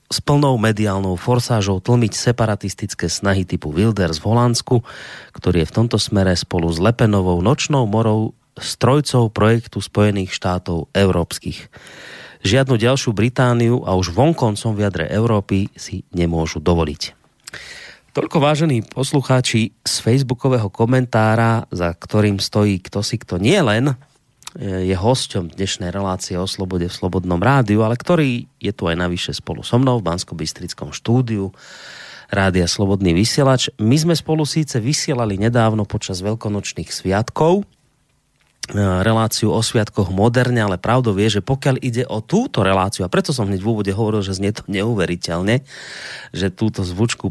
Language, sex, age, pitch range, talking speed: Slovak, male, 30-49, 95-120 Hz, 140 wpm